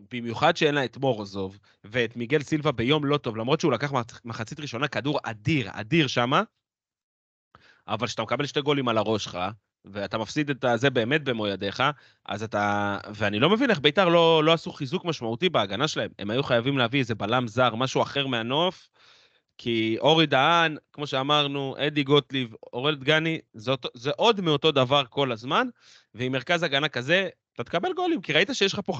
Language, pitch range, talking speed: Hebrew, 115-160 Hz, 180 wpm